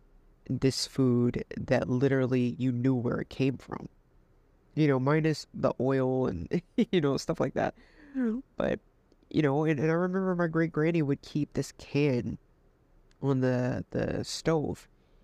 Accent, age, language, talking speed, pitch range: American, 20-39, English, 155 wpm, 125-150 Hz